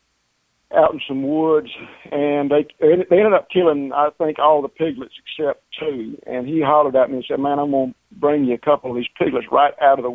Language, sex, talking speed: English, male, 230 wpm